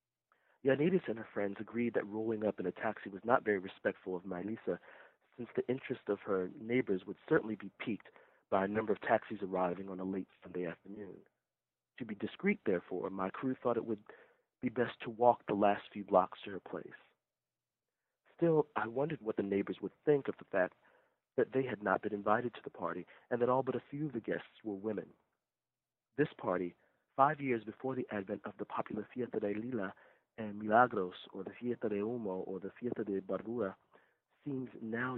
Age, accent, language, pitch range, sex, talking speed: 40-59, American, English, 95-120 Hz, male, 195 wpm